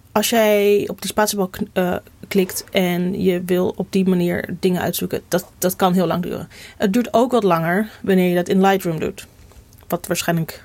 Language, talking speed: Dutch, 185 wpm